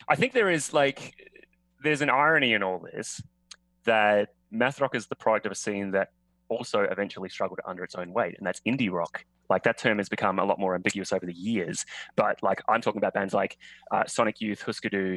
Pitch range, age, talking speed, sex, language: 95-110 Hz, 20-39, 220 wpm, male, English